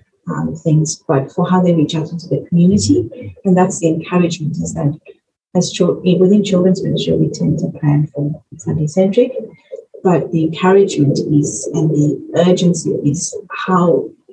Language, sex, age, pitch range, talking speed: English, female, 30-49, 155-190 Hz, 155 wpm